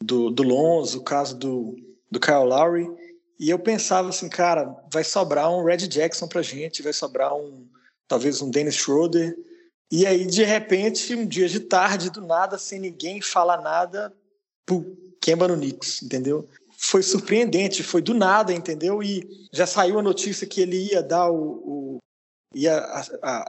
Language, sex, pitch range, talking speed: Portuguese, male, 155-195 Hz, 170 wpm